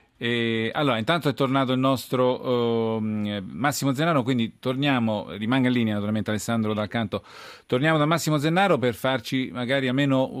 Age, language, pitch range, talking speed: 40-59, Italian, 110-135 Hz, 150 wpm